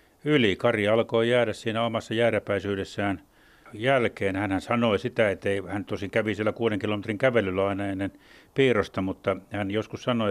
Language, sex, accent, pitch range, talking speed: Finnish, male, native, 95-110 Hz, 155 wpm